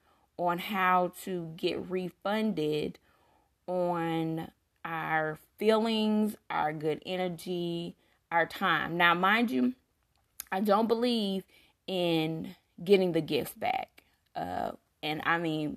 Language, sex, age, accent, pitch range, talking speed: English, female, 20-39, American, 160-195 Hz, 105 wpm